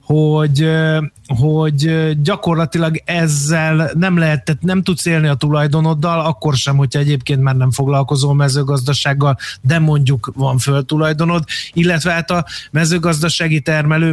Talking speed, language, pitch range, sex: 120 wpm, Hungarian, 135-155 Hz, male